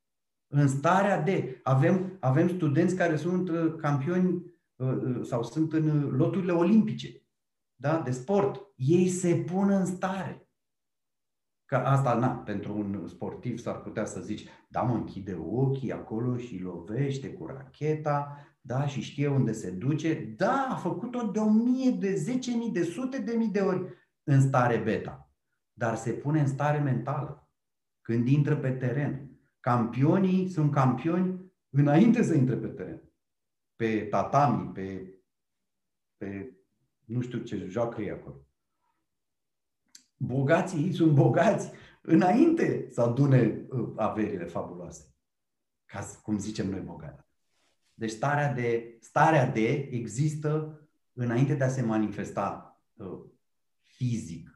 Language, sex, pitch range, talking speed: Romanian, male, 115-175 Hz, 130 wpm